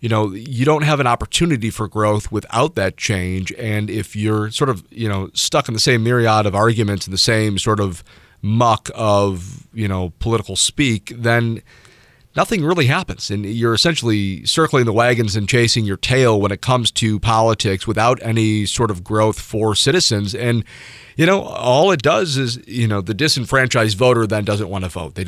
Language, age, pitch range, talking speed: English, 30-49, 105-125 Hz, 190 wpm